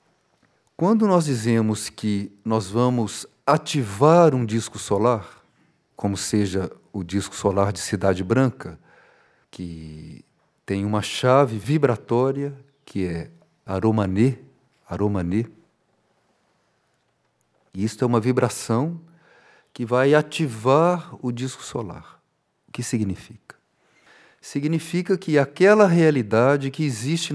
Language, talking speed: Portuguese, 105 wpm